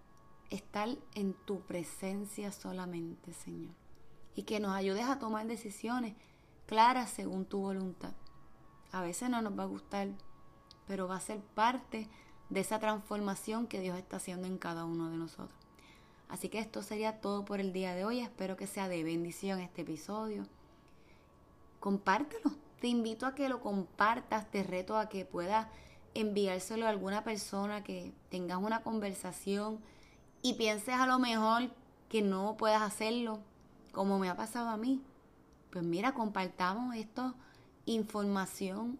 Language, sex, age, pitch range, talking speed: Spanish, female, 20-39, 190-225 Hz, 150 wpm